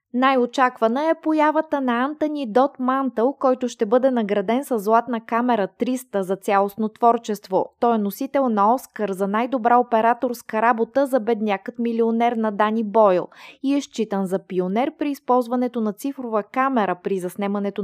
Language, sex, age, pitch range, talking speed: Bulgarian, female, 20-39, 210-265 Hz, 150 wpm